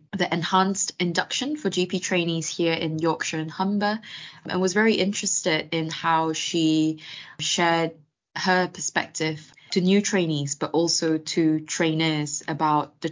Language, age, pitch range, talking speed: English, 20-39, 160-195 Hz, 135 wpm